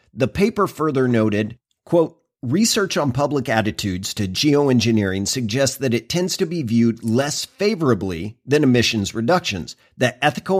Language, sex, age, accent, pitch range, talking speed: English, male, 50-69, American, 115-165 Hz, 140 wpm